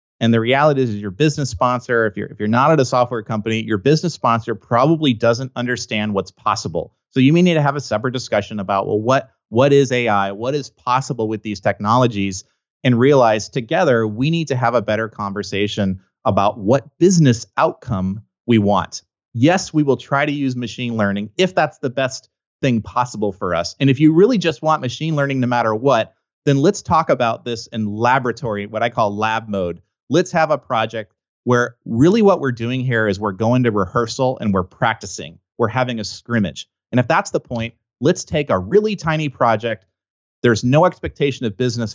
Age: 30-49